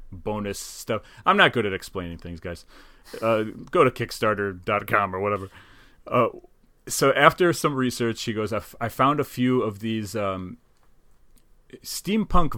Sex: male